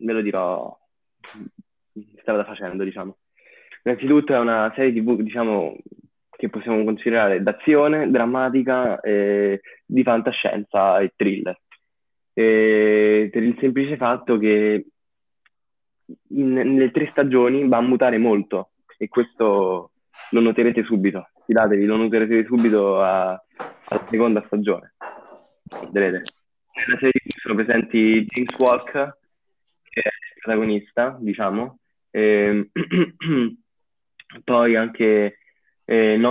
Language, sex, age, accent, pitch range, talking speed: Italian, male, 20-39, native, 105-120 Hz, 105 wpm